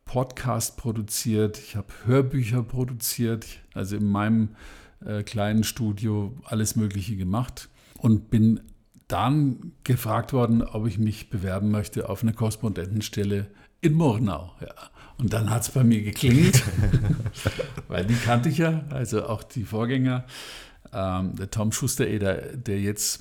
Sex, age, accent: male, 50-69, German